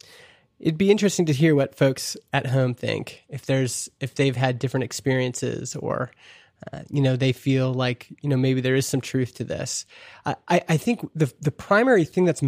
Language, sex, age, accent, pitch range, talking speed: English, male, 20-39, American, 130-160 Hz, 195 wpm